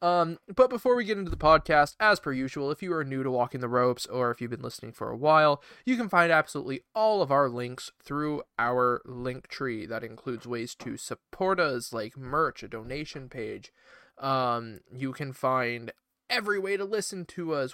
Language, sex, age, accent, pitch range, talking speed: English, male, 20-39, American, 130-190 Hz, 205 wpm